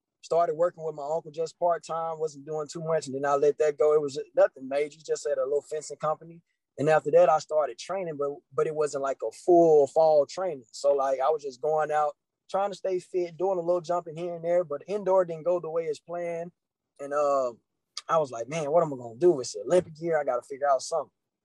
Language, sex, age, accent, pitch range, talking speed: English, male, 20-39, American, 150-180 Hz, 250 wpm